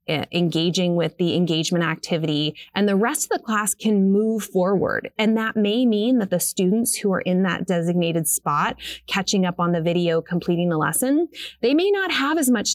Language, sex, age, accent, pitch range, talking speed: English, female, 30-49, American, 175-235 Hz, 195 wpm